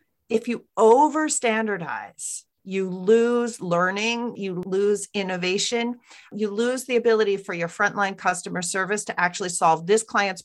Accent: American